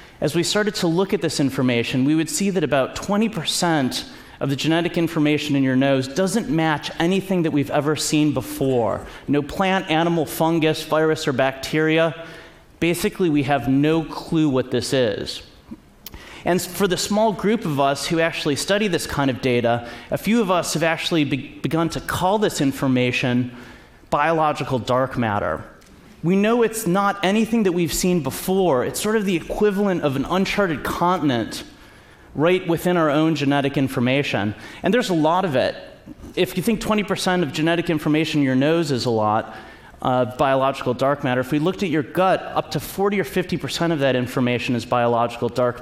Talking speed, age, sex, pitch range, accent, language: 180 wpm, 30-49, male, 135-175 Hz, American, Russian